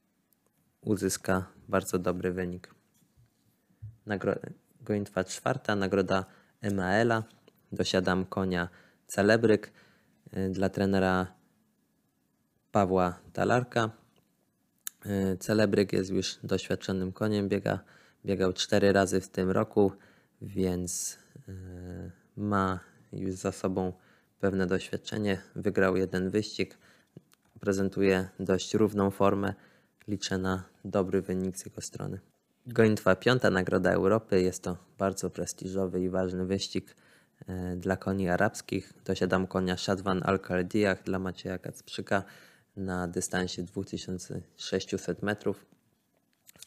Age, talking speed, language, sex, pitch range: 20-39, 95 wpm, Polish, male, 95-100 Hz